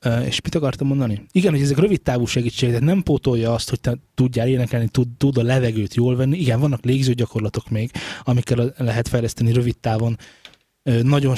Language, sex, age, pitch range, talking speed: Hungarian, male, 20-39, 115-130 Hz, 175 wpm